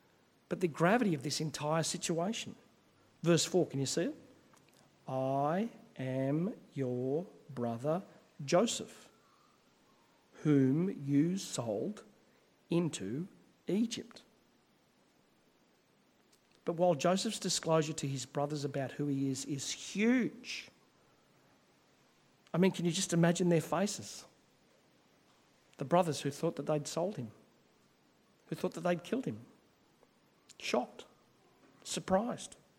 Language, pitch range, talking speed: English, 150-185 Hz, 110 wpm